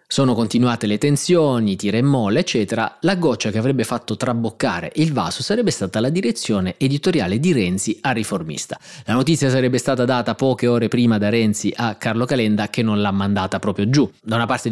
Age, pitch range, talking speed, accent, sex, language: 30-49, 105-130 Hz, 190 wpm, native, male, Italian